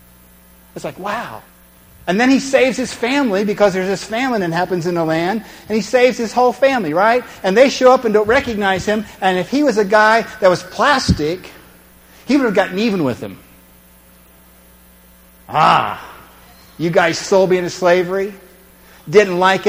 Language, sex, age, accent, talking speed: English, male, 50-69, American, 175 wpm